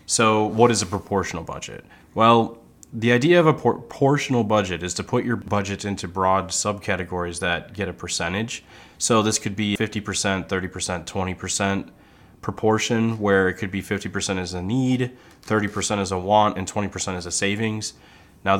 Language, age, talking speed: English, 20-39, 165 wpm